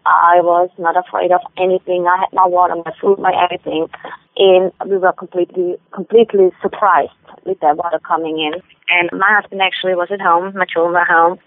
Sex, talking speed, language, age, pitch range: female, 190 wpm, English, 20-39, 180-210 Hz